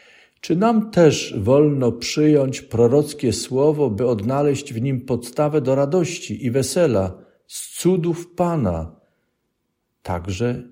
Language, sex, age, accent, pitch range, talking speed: Polish, male, 50-69, native, 105-150 Hz, 110 wpm